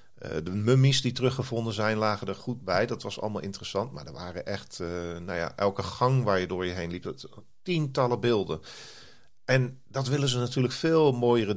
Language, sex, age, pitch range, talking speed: Dutch, male, 40-59, 95-125 Hz, 200 wpm